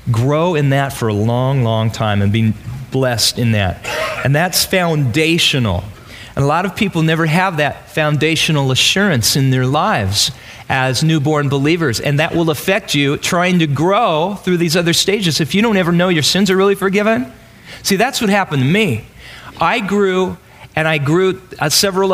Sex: male